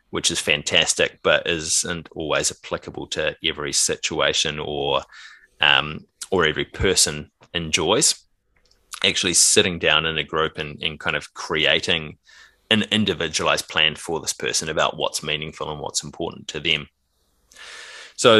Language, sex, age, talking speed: English, male, 20-39, 135 wpm